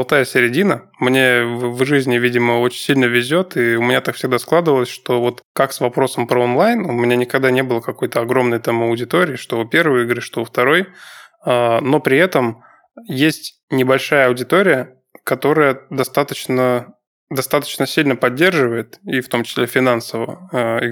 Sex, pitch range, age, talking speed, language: male, 120-135 Hz, 20-39, 155 wpm, Russian